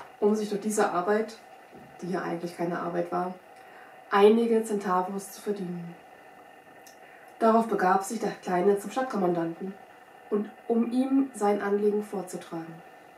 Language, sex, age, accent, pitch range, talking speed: German, female, 20-39, German, 195-240 Hz, 125 wpm